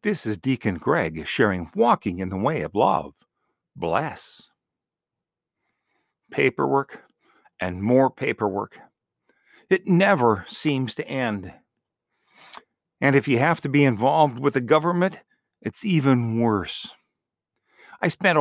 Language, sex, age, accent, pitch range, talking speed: English, male, 50-69, American, 120-175 Hz, 115 wpm